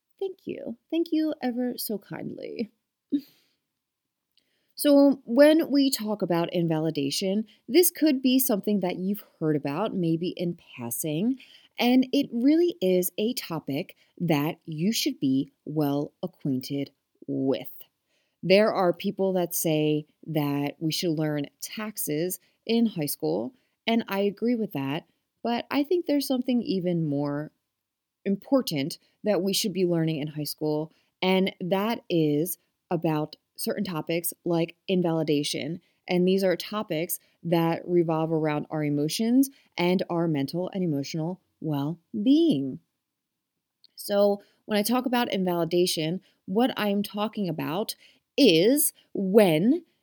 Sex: female